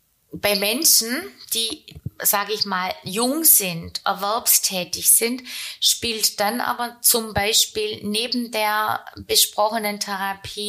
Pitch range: 180-220 Hz